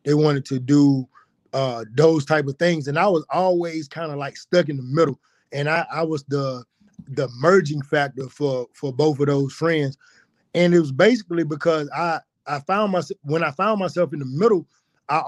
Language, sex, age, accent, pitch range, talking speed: English, male, 20-39, American, 140-175 Hz, 200 wpm